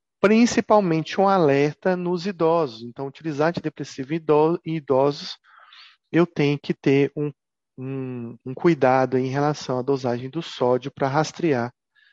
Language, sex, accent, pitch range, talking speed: Italian, male, Brazilian, 135-180 Hz, 125 wpm